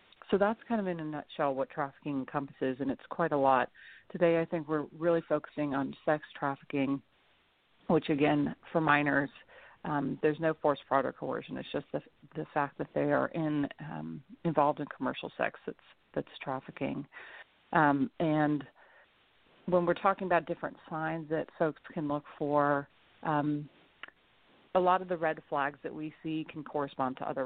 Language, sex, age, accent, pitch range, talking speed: English, female, 40-59, American, 140-160 Hz, 175 wpm